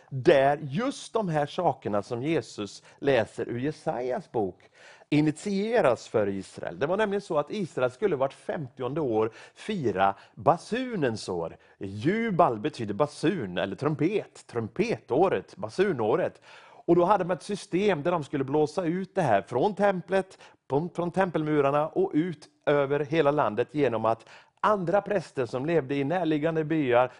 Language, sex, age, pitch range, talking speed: English, male, 30-49, 130-185 Hz, 145 wpm